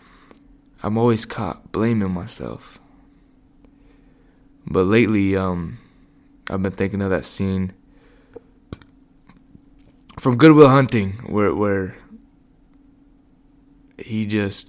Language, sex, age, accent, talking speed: English, male, 20-39, American, 90 wpm